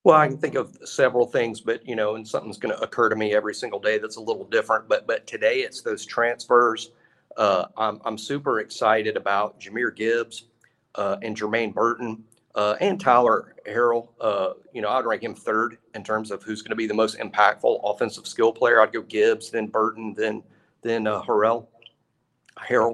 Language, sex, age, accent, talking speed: English, male, 40-59, American, 200 wpm